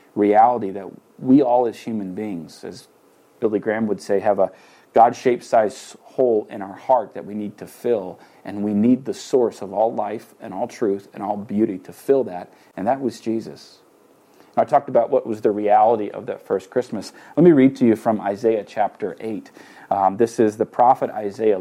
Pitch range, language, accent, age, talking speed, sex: 105-130 Hz, English, American, 40-59, 205 wpm, male